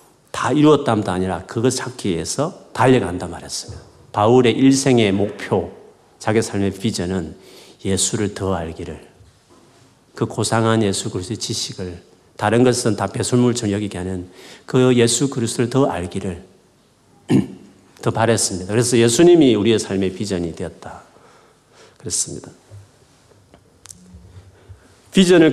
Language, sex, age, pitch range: Korean, male, 40-59, 95-130 Hz